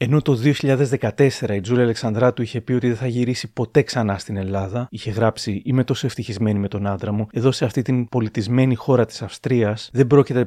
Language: Greek